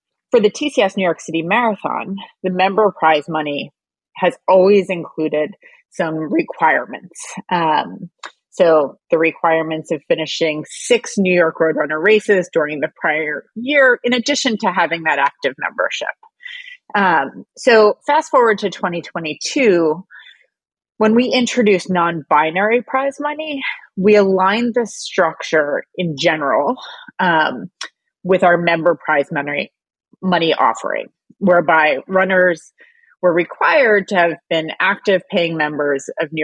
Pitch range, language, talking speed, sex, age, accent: 160-215 Hz, English, 125 wpm, female, 30-49, American